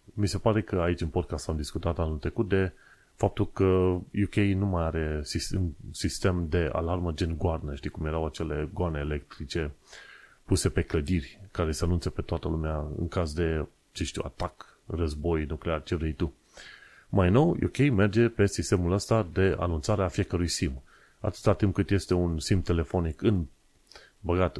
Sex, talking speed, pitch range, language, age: male, 175 wpm, 85-100 Hz, Romanian, 30-49